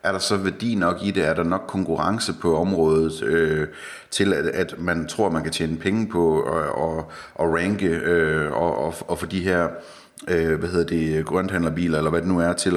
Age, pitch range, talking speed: 30-49, 80-95 Hz, 220 wpm